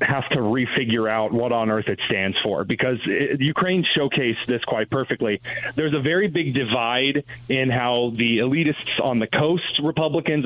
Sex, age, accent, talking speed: male, 30-49, American, 170 wpm